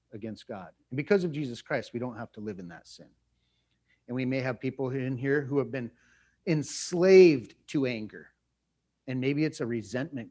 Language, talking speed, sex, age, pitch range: English, 190 wpm, male, 40-59, 125-160 Hz